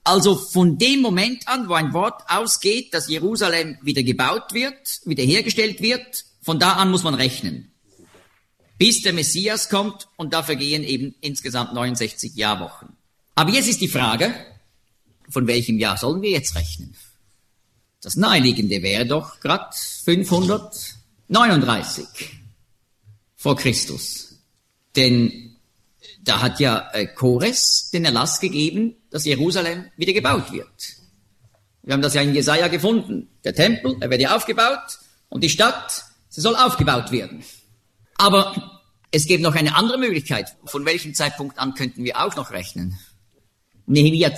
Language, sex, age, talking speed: German, male, 50-69, 140 wpm